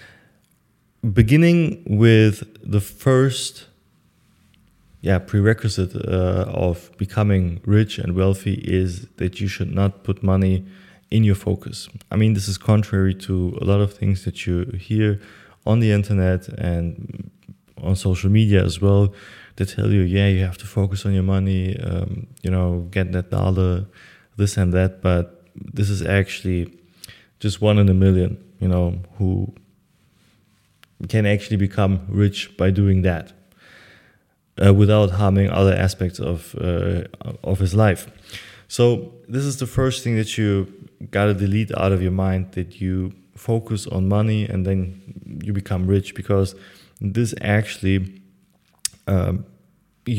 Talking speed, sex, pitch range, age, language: 145 wpm, male, 95-110 Hz, 20-39, English